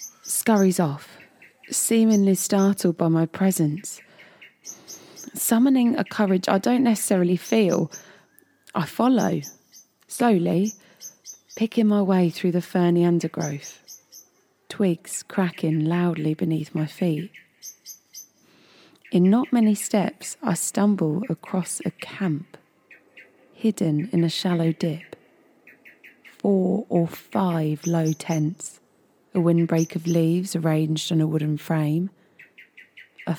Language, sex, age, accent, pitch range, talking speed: English, female, 20-39, British, 160-195 Hz, 105 wpm